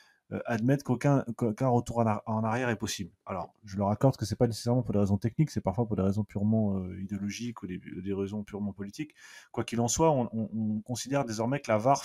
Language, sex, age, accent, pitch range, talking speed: French, male, 20-39, French, 105-130 Hz, 230 wpm